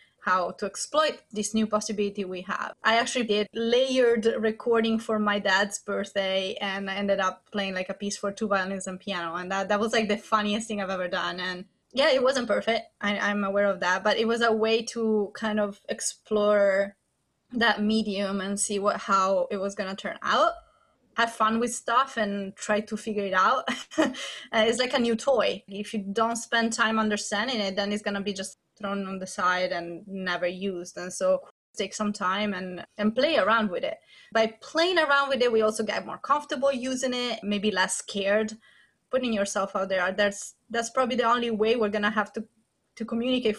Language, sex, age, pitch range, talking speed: English, female, 20-39, 195-230 Hz, 200 wpm